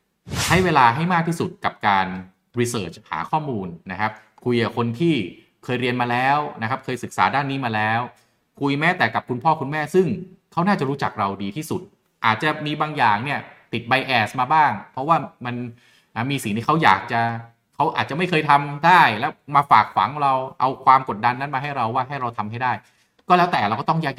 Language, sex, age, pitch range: Thai, male, 20-39, 110-145 Hz